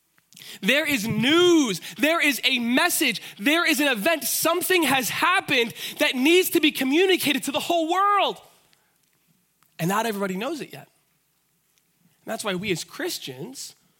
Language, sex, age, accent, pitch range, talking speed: English, male, 20-39, American, 170-235 Hz, 145 wpm